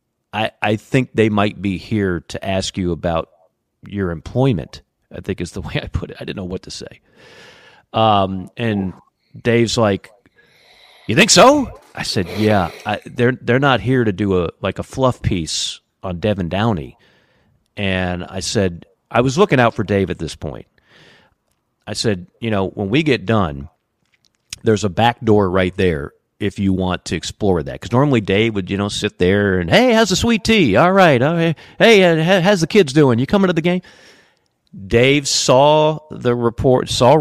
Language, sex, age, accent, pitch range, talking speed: English, male, 40-59, American, 95-130 Hz, 185 wpm